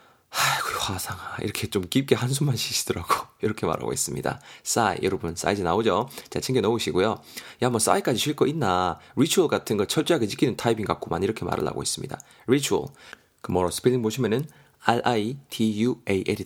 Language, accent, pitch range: Korean, native, 100-135 Hz